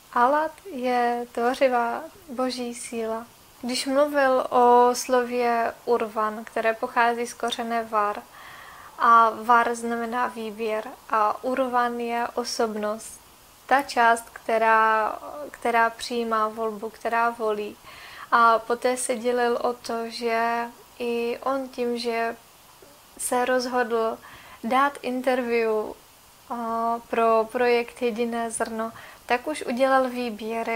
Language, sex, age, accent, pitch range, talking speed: Russian, female, 20-39, Czech, 230-255 Hz, 105 wpm